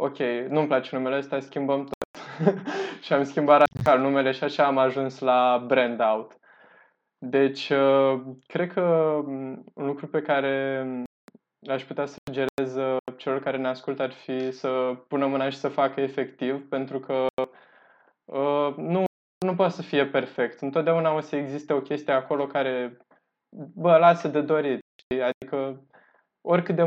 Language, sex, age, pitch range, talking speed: Romanian, male, 20-39, 135-150 Hz, 145 wpm